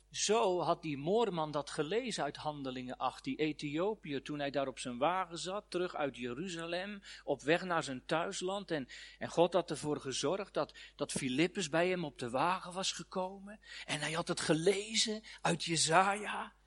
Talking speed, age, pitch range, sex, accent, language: 175 wpm, 40-59, 120-180 Hz, male, Dutch, Dutch